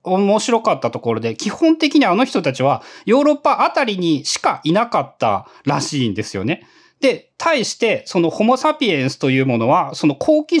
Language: Japanese